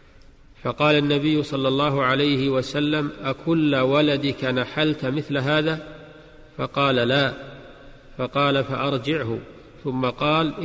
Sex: male